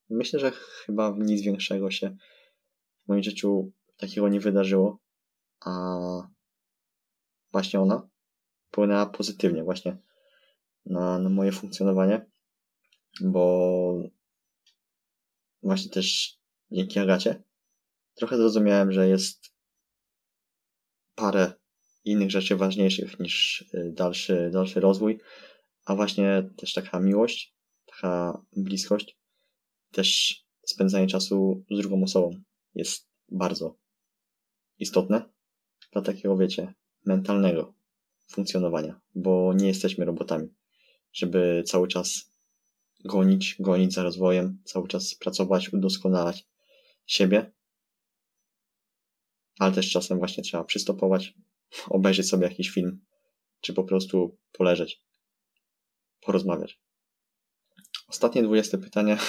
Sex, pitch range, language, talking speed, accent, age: male, 95-105 Hz, Polish, 95 wpm, native, 20-39